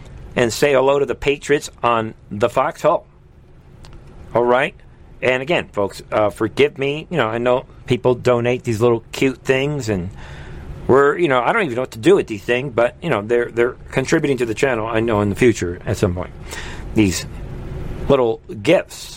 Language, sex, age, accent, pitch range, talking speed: English, male, 50-69, American, 115-145 Hz, 190 wpm